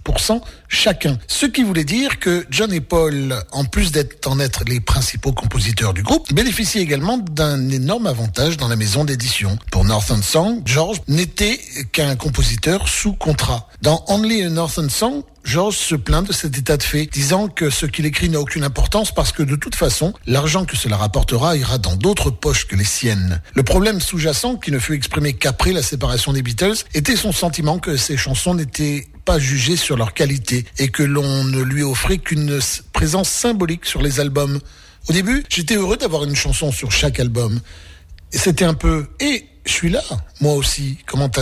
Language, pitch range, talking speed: French, 130-170 Hz, 190 wpm